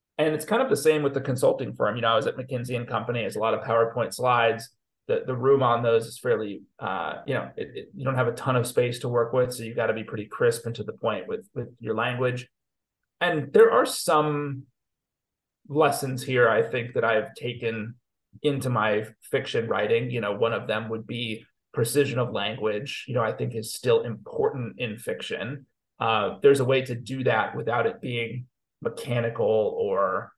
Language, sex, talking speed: English, male, 210 wpm